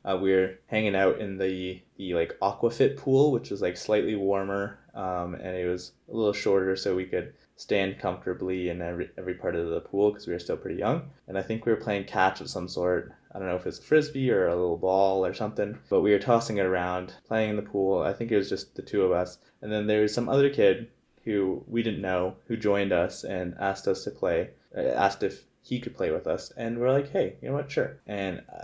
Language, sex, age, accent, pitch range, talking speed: English, male, 20-39, American, 95-110 Hz, 255 wpm